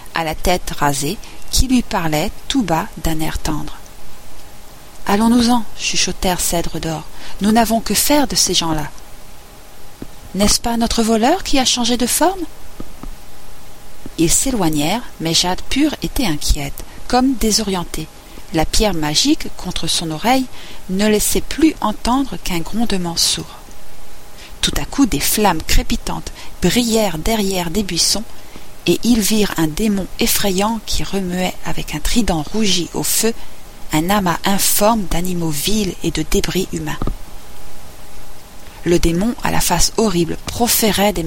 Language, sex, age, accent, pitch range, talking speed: French, female, 40-59, French, 170-225 Hz, 140 wpm